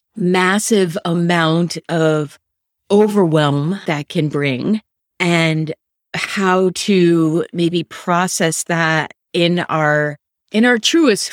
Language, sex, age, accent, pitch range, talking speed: English, female, 30-49, American, 160-195 Hz, 95 wpm